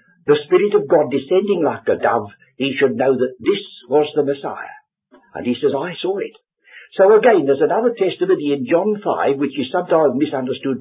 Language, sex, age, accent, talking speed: English, male, 60-79, British, 190 wpm